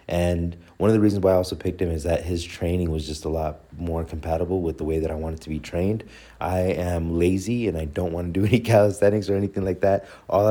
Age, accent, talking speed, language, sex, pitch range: 30-49, American, 255 wpm, English, male, 85-100 Hz